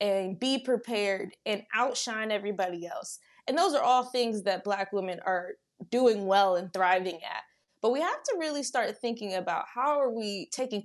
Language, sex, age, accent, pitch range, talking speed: English, female, 20-39, American, 185-250 Hz, 185 wpm